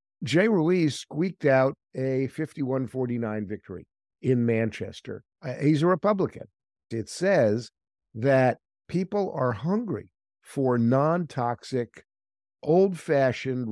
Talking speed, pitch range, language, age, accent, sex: 90 wpm, 120-165 Hz, English, 50-69, American, male